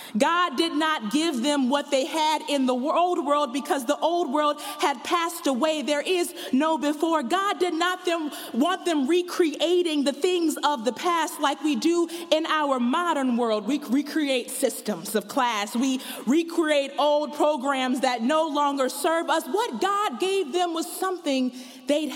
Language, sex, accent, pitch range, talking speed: English, female, American, 260-330 Hz, 170 wpm